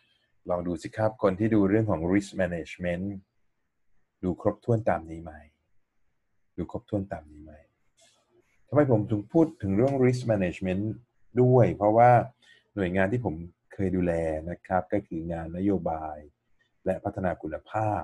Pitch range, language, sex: 85-110 Hz, Thai, male